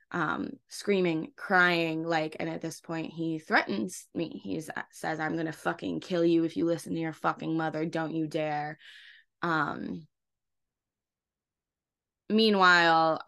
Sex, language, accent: female, English, American